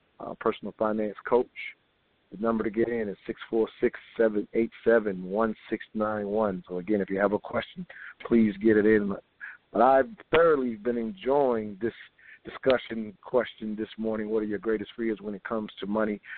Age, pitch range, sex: 50-69, 105-120 Hz, male